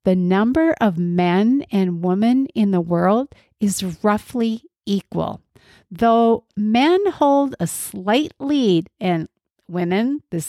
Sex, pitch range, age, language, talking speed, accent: female, 180-240 Hz, 50-69, English, 120 wpm, American